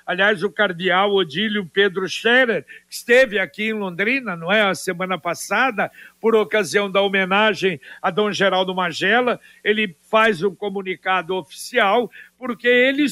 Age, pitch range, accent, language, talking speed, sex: 60-79, 195-230 Hz, Brazilian, Portuguese, 140 wpm, male